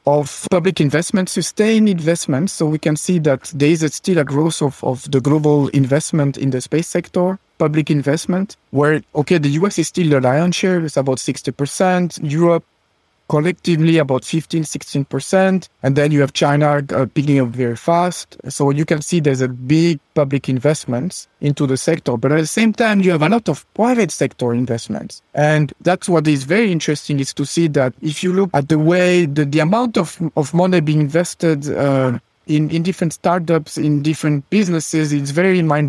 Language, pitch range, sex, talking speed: English, 140-170 Hz, male, 190 wpm